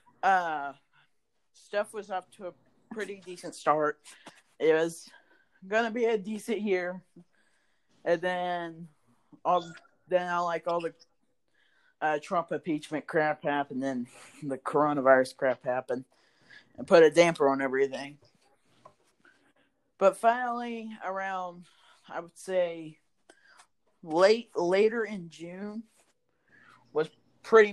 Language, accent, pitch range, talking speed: English, American, 150-190 Hz, 110 wpm